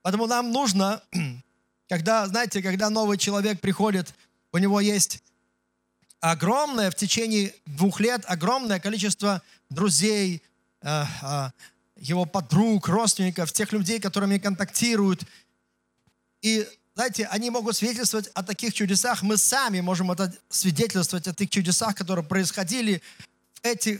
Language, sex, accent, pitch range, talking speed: Russian, male, native, 170-215 Hz, 115 wpm